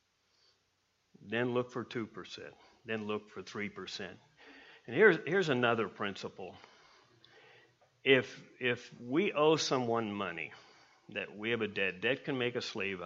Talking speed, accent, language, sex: 135 wpm, American, English, male